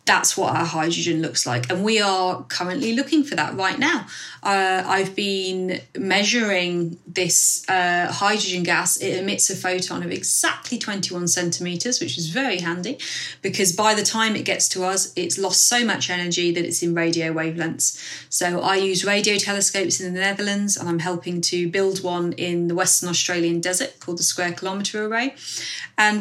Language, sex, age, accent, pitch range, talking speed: English, female, 30-49, British, 175-215 Hz, 180 wpm